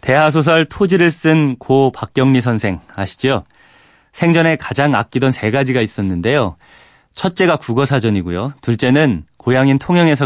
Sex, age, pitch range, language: male, 30-49, 115-150 Hz, Korean